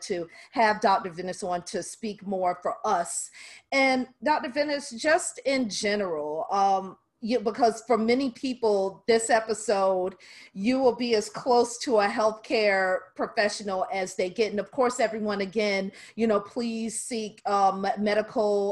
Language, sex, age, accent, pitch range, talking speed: English, female, 40-59, American, 190-235 Hz, 150 wpm